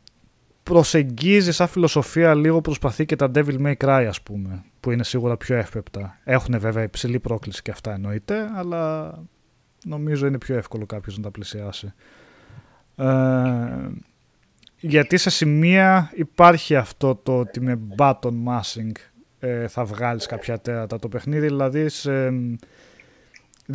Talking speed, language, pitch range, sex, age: 135 wpm, Greek, 115-145 Hz, male, 20-39